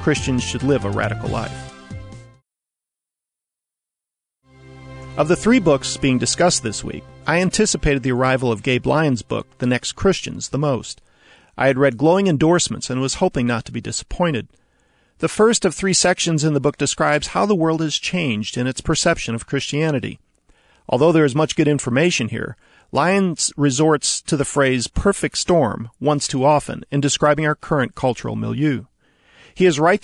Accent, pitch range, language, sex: American, 125-170 Hz, English, male